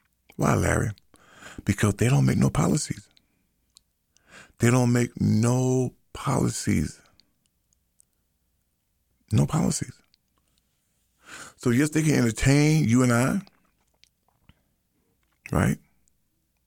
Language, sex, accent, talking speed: English, male, American, 85 wpm